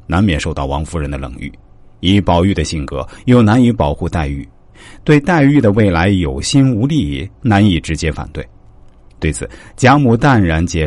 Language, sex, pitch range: Chinese, male, 80-120 Hz